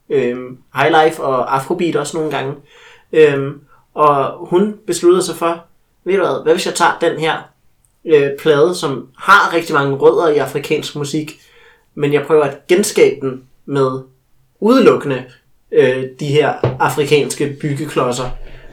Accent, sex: native, male